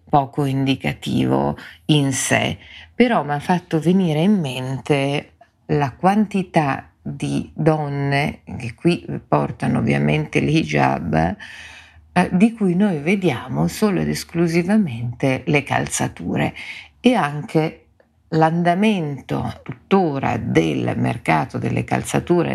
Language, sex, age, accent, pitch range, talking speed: Italian, female, 50-69, native, 130-175 Hz, 100 wpm